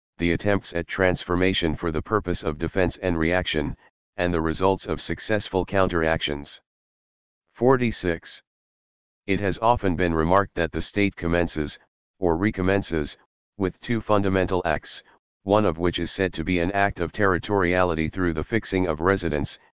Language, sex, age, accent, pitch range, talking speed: English, male, 40-59, American, 80-95 Hz, 150 wpm